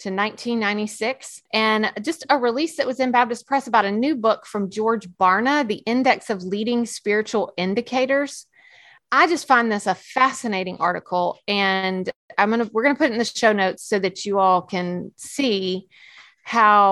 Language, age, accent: English, 30-49, American